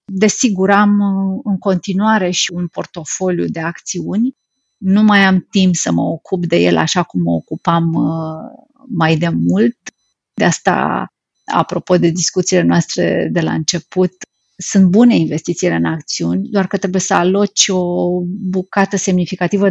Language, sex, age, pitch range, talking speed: Romanian, female, 30-49, 180-215 Hz, 140 wpm